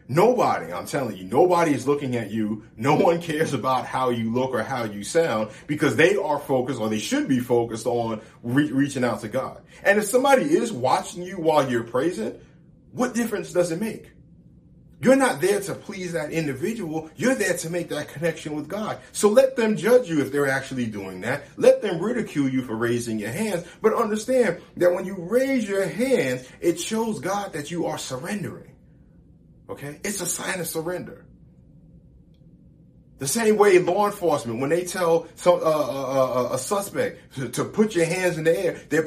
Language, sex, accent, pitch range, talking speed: English, male, American, 135-190 Hz, 190 wpm